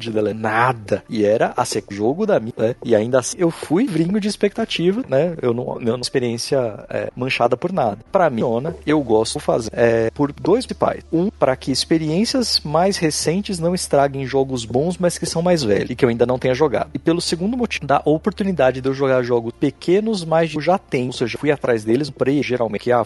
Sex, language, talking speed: male, Portuguese, 225 wpm